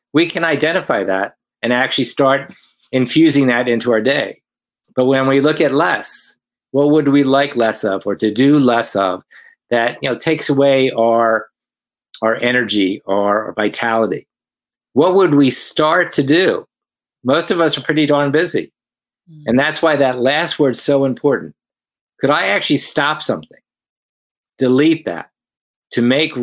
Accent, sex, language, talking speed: American, male, English, 160 wpm